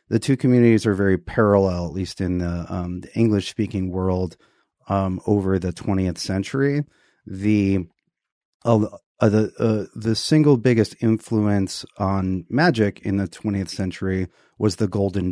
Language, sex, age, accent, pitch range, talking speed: English, male, 30-49, American, 95-110 Hz, 145 wpm